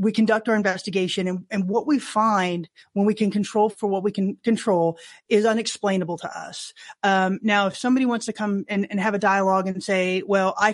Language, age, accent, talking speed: English, 30-49, American, 210 wpm